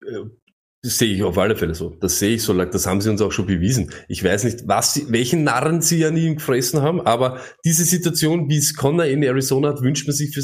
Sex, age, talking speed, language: male, 20-39, 245 wpm, German